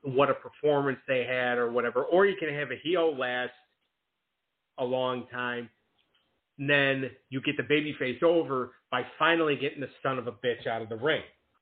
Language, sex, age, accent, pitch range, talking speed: English, male, 40-59, American, 125-155 Hz, 190 wpm